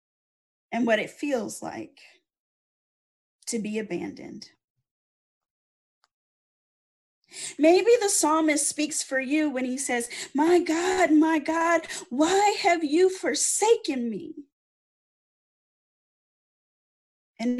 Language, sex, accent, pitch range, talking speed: English, female, American, 235-310 Hz, 90 wpm